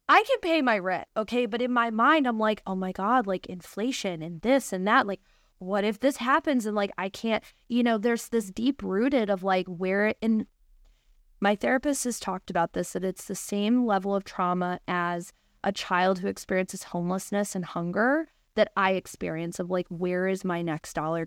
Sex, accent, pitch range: female, American, 190-245 Hz